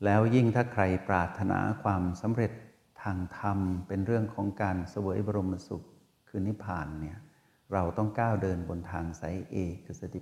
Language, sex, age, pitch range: Thai, male, 60-79, 90-110 Hz